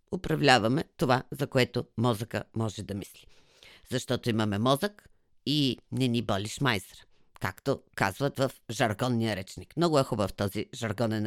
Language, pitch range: Bulgarian, 105-140 Hz